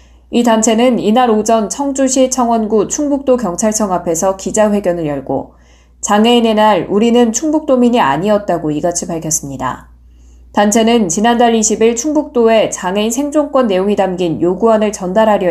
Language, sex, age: Korean, female, 20-39